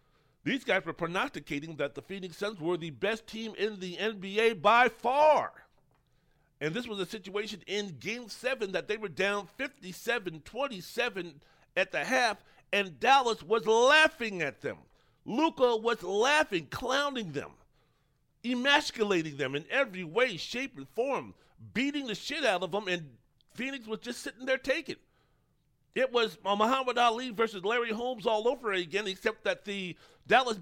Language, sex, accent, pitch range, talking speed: English, male, American, 180-245 Hz, 155 wpm